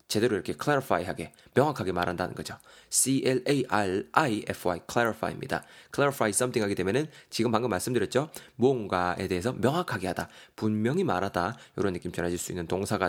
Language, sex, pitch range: Korean, male, 95-140 Hz